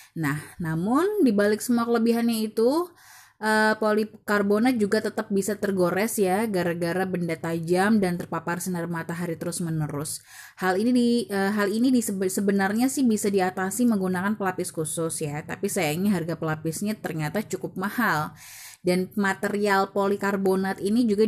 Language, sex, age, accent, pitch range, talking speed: Indonesian, female, 20-39, native, 170-215 Hz, 140 wpm